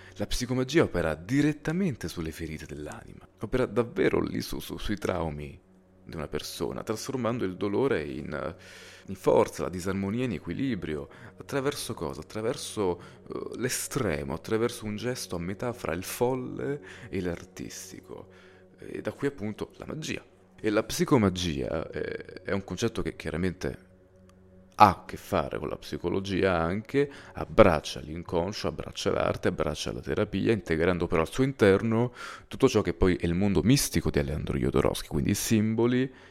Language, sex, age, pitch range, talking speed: Italian, male, 30-49, 85-105 Hz, 145 wpm